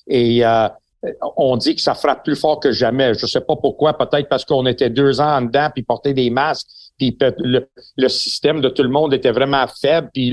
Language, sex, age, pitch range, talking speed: French, male, 60-79, 130-170 Hz, 230 wpm